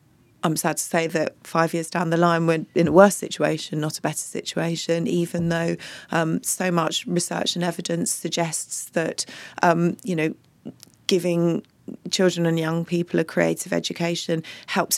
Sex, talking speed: female, 165 wpm